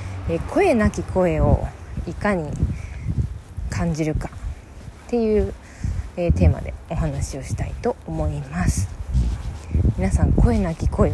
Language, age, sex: Japanese, 20-39, female